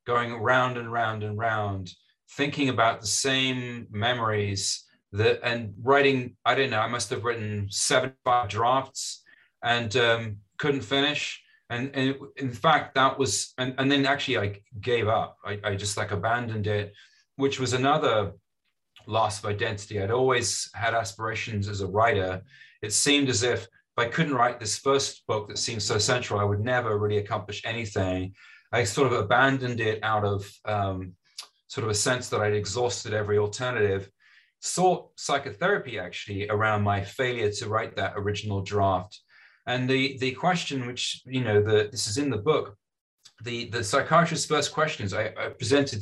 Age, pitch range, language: 30-49, 105-130 Hz, English